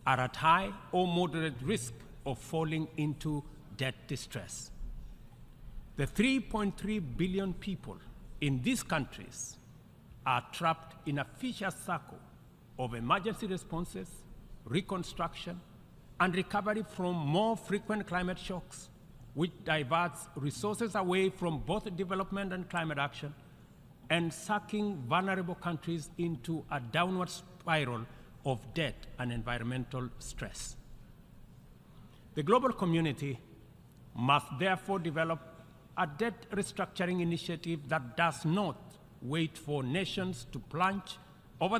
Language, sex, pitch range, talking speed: English, male, 140-185 Hz, 110 wpm